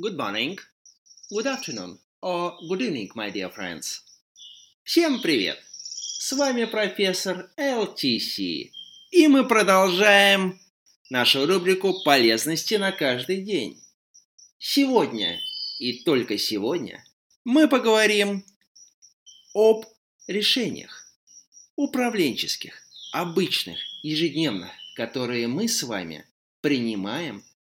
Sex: male